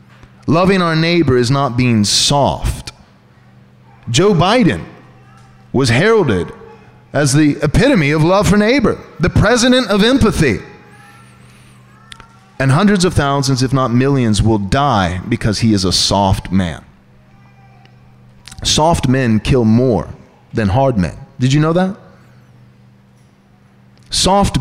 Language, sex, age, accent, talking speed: English, male, 30-49, American, 120 wpm